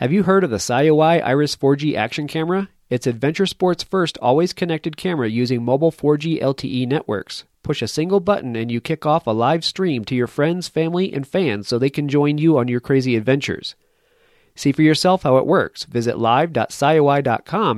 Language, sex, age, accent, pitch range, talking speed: English, male, 40-59, American, 130-165 Hz, 190 wpm